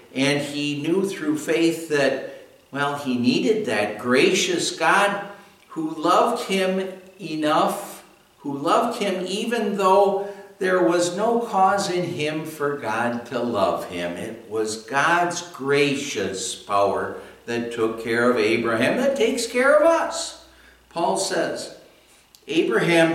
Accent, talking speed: American, 130 wpm